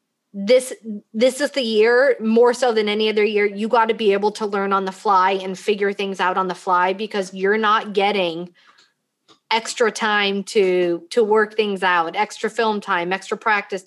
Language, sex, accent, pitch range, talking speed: English, female, American, 200-245 Hz, 190 wpm